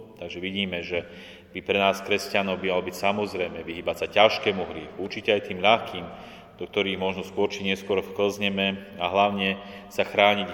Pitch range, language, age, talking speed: 95-115 Hz, Slovak, 30-49, 165 wpm